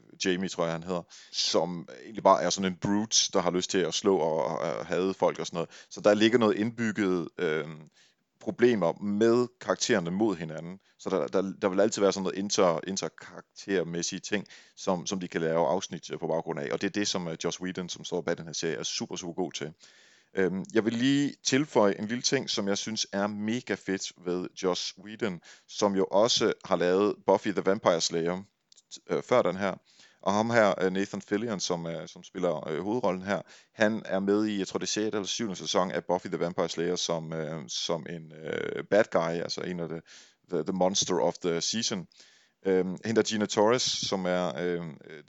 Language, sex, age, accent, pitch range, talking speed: Danish, male, 30-49, native, 90-105 Hz, 210 wpm